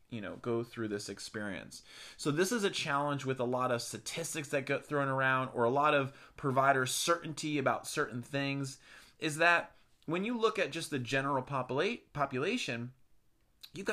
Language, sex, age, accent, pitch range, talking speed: English, male, 20-39, American, 135-175 Hz, 175 wpm